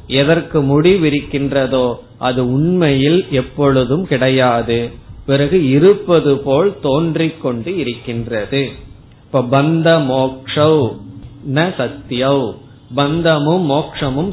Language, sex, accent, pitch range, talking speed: Tamil, male, native, 120-145 Hz, 65 wpm